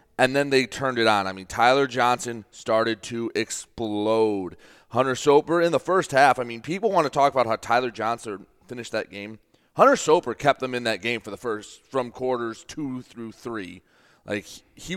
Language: English